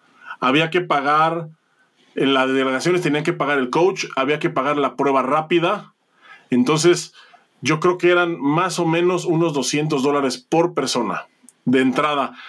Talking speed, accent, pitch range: 155 wpm, Mexican, 135-175 Hz